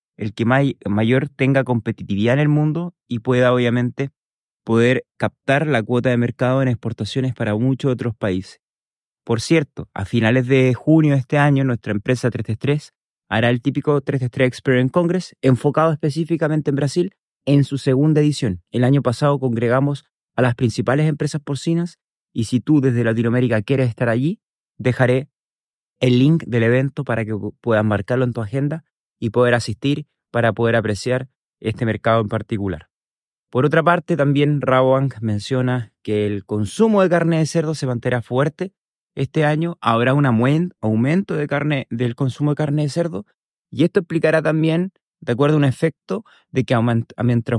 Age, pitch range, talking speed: 30-49, 115-150 Hz, 165 wpm